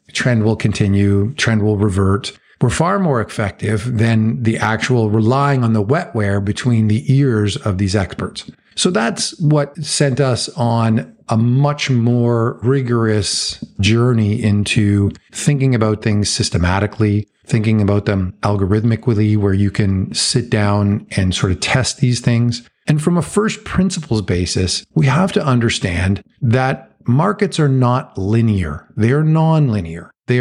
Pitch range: 105-140 Hz